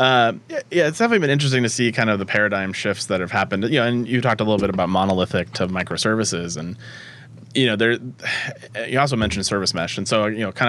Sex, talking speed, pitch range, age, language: male, 235 wpm, 105-130 Hz, 30-49, English